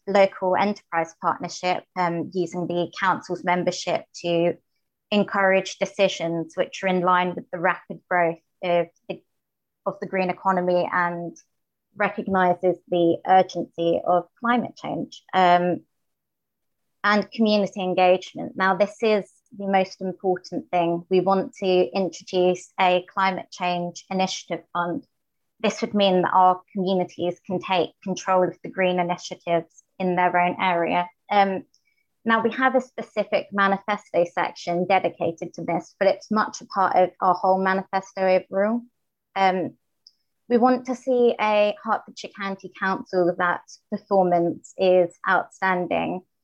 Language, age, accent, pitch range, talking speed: English, 20-39, British, 175-200 Hz, 130 wpm